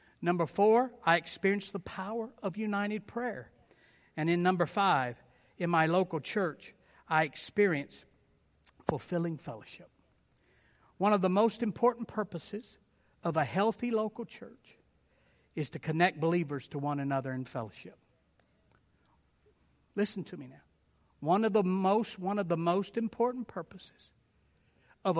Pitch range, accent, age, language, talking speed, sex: 175-245 Hz, American, 60-79, English, 135 wpm, male